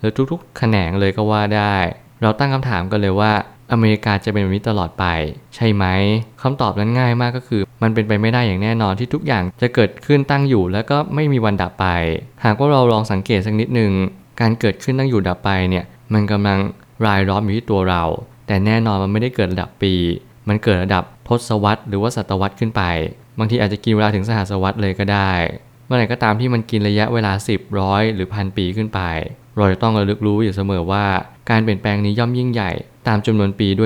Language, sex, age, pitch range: Thai, male, 20-39, 95-115 Hz